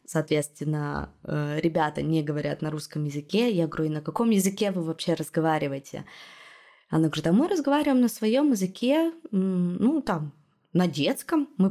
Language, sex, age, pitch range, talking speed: Russian, female, 20-39, 160-210 Hz, 150 wpm